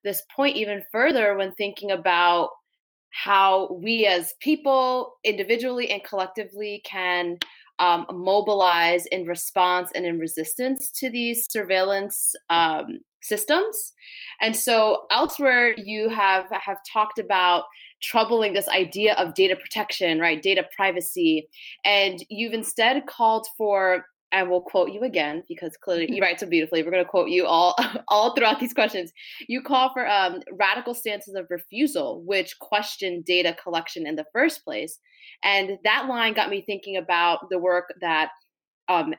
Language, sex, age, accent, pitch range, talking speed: English, female, 20-39, American, 180-245 Hz, 150 wpm